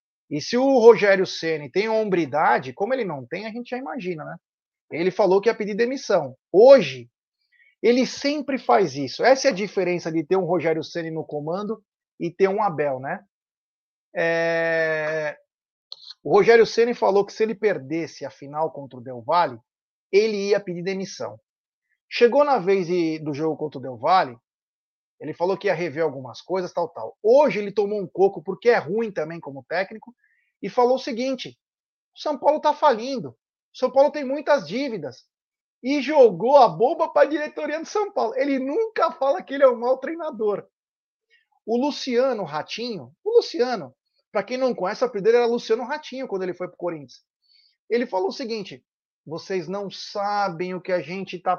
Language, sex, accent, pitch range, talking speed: Portuguese, male, Brazilian, 170-260 Hz, 185 wpm